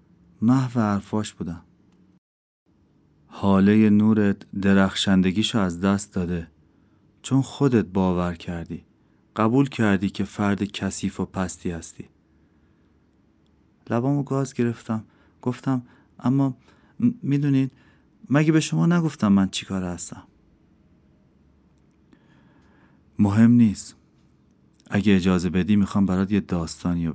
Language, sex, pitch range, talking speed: Persian, male, 90-115 Hz, 95 wpm